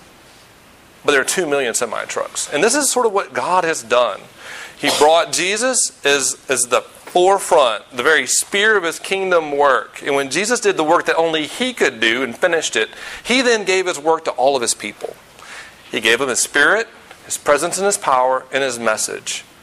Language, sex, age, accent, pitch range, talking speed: English, male, 40-59, American, 140-185 Hz, 200 wpm